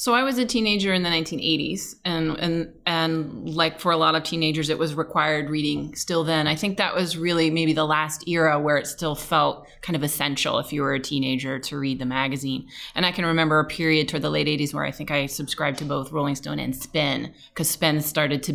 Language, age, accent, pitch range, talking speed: English, 30-49, American, 150-190 Hz, 235 wpm